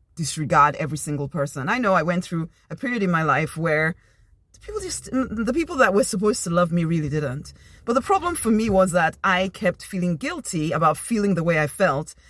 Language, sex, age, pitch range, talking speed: English, female, 30-49, 165-225 Hz, 210 wpm